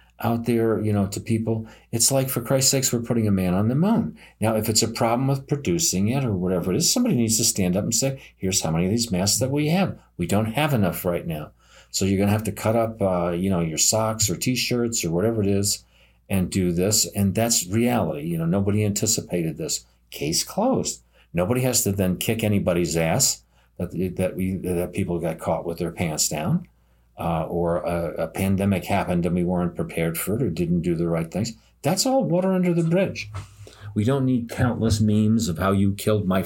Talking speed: 220 wpm